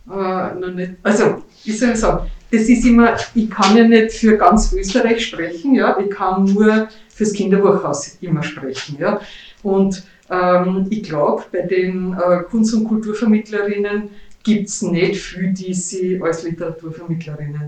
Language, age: German, 50-69